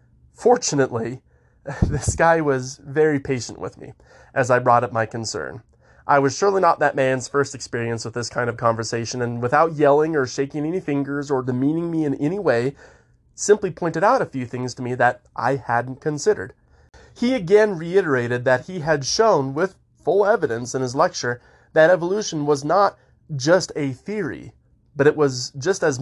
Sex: male